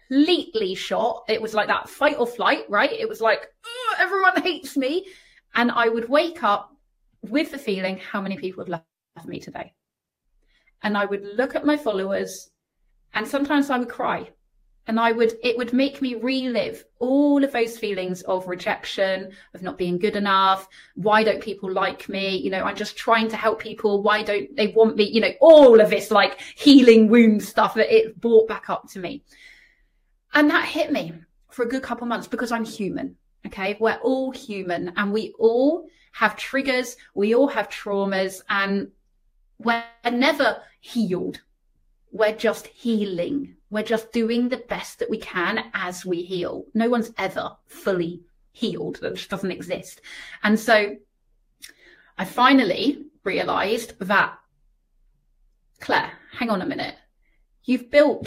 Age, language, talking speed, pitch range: 30-49, English, 170 wpm, 205-265 Hz